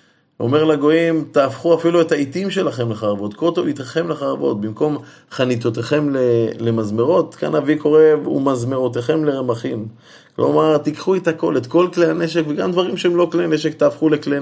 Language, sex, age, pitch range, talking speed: Hebrew, male, 20-39, 115-155 Hz, 155 wpm